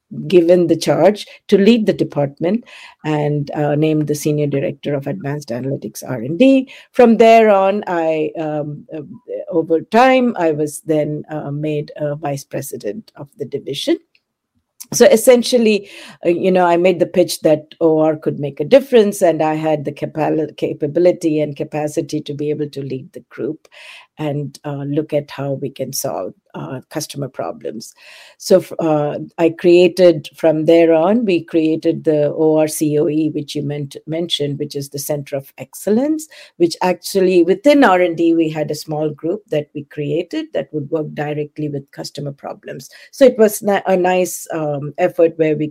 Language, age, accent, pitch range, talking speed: English, 50-69, Indian, 150-180 Hz, 160 wpm